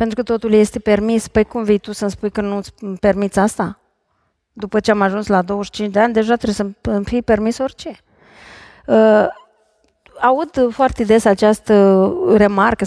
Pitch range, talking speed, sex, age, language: 210-285 Hz, 165 wpm, female, 20-39, Romanian